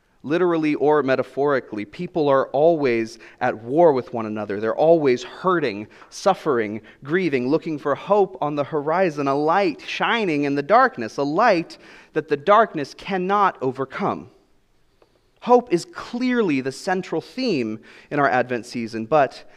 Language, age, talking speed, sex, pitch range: English, 30-49, 140 wpm, male, 110-150 Hz